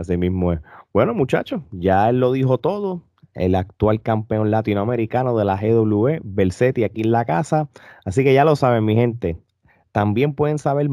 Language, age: Spanish, 30-49